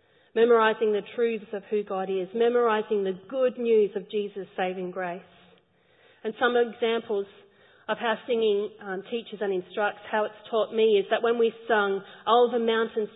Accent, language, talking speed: Australian, English, 165 wpm